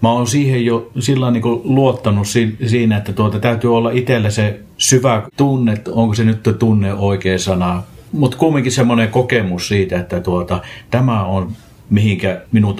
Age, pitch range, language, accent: 50-69, 95-115 Hz, Finnish, native